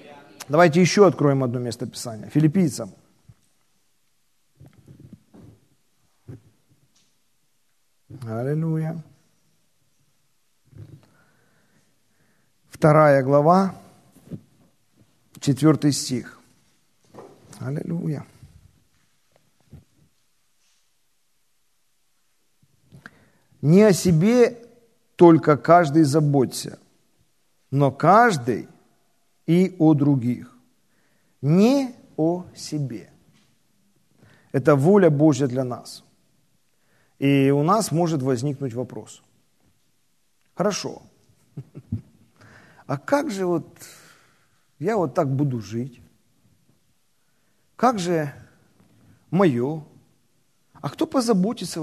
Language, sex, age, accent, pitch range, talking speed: Ukrainian, male, 50-69, native, 135-175 Hz, 65 wpm